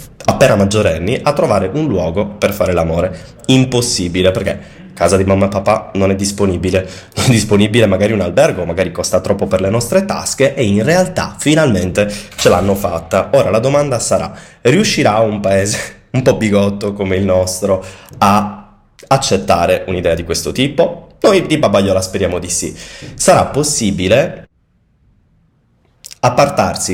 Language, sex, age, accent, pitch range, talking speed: Italian, male, 20-39, native, 95-120 Hz, 150 wpm